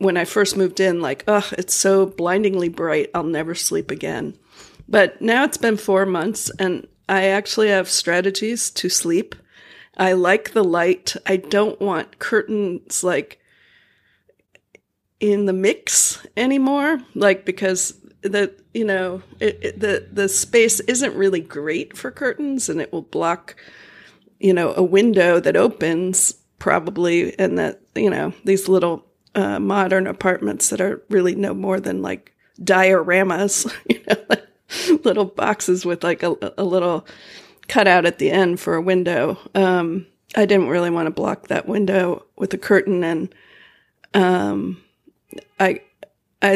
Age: 40-59